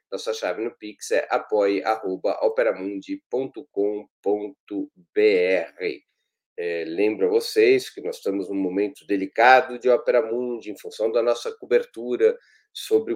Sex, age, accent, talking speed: male, 40-59, Brazilian, 110 wpm